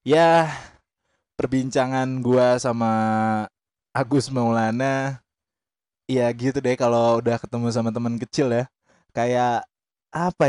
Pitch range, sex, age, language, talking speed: 105-140 Hz, male, 20-39, Indonesian, 105 wpm